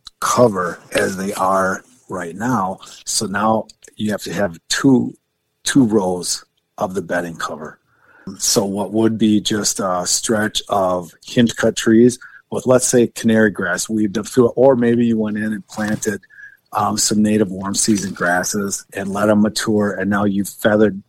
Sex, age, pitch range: male, 40-59, 95-110 Hz